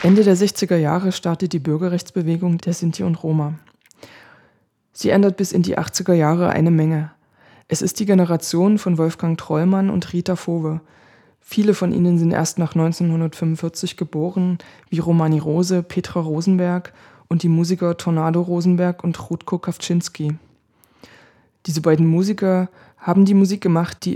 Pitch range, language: 165-185 Hz, German